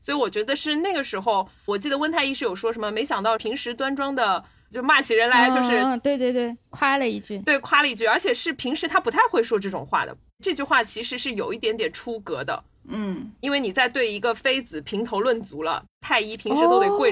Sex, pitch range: female, 215-295 Hz